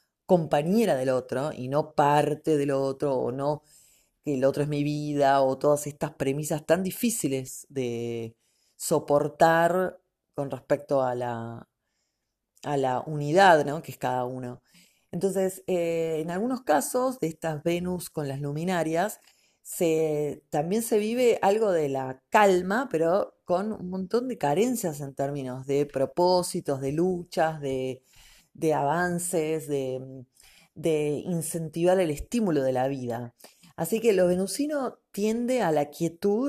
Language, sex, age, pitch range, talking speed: Spanish, female, 30-49, 140-190 Hz, 135 wpm